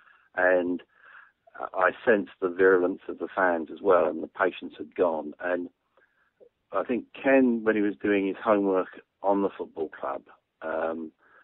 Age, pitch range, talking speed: 50-69, 90-105 Hz, 155 wpm